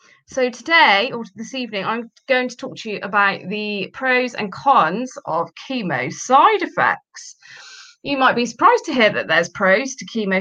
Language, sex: English, female